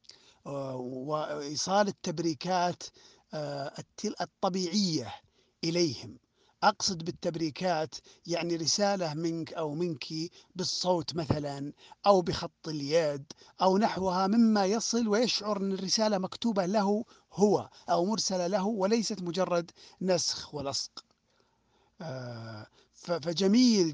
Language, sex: Arabic, male